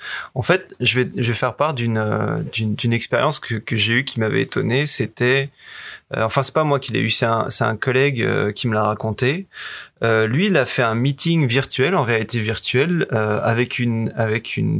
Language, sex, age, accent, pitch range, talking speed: French, male, 20-39, French, 115-140 Hz, 215 wpm